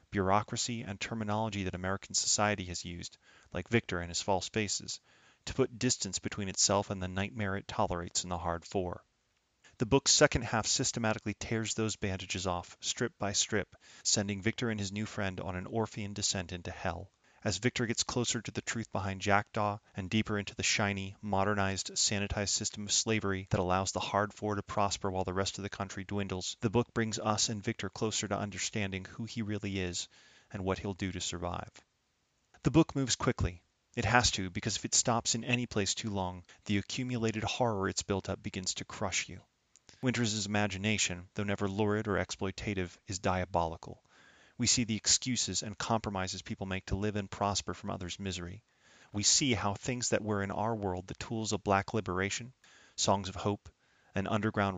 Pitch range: 95-110 Hz